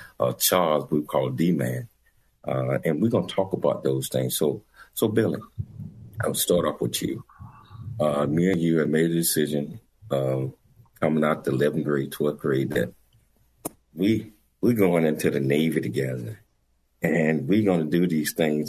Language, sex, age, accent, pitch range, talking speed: English, male, 50-69, American, 65-80 Hz, 165 wpm